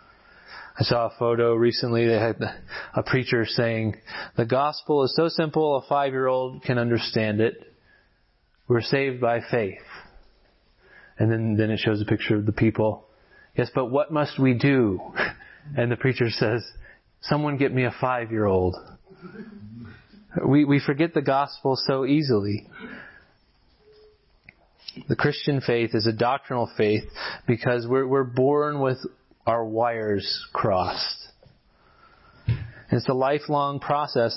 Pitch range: 115-140 Hz